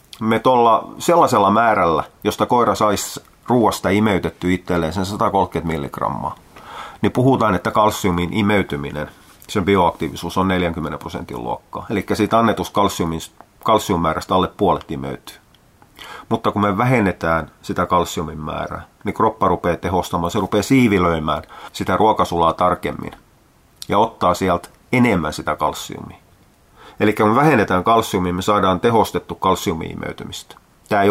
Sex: male